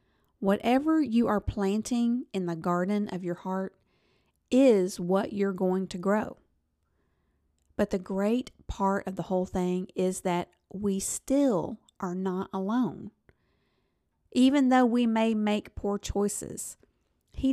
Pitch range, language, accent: 180-235 Hz, English, American